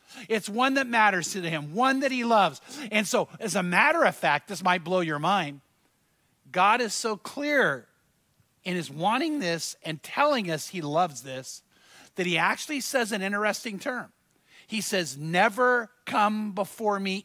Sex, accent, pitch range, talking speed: male, American, 180-250 Hz, 170 wpm